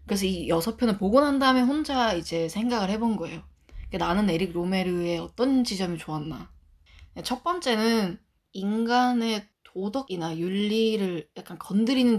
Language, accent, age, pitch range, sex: Korean, native, 20-39, 170-230 Hz, female